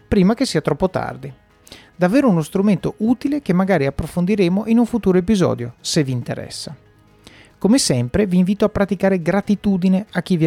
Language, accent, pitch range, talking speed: Italian, native, 135-205 Hz, 165 wpm